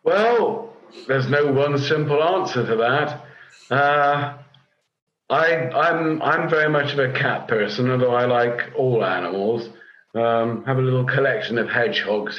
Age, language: 50-69, English